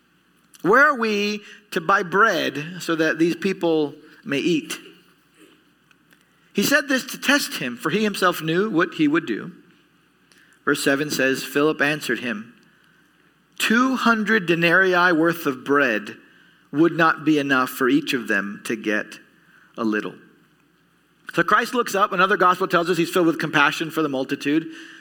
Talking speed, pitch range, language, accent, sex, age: 155 wpm, 155-220 Hz, English, American, male, 40-59